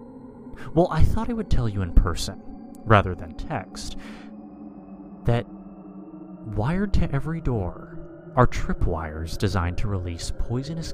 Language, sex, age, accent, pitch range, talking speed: English, male, 30-49, American, 90-120 Hz, 125 wpm